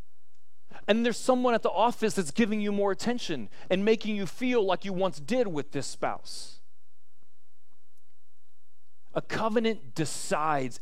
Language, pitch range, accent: English, 130-180 Hz, American